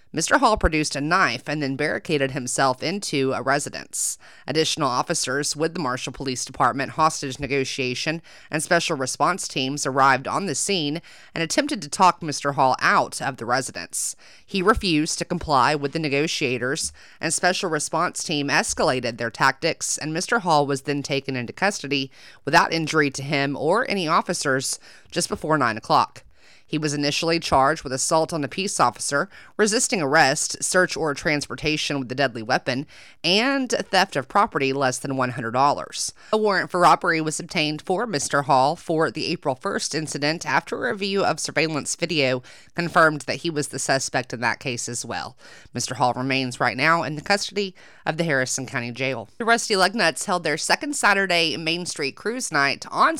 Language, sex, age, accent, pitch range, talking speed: English, female, 30-49, American, 135-170 Hz, 175 wpm